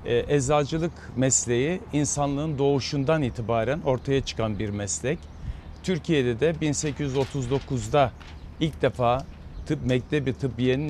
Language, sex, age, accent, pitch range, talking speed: Turkish, male, 60-79, native, 120-155 Hz, 95 wpm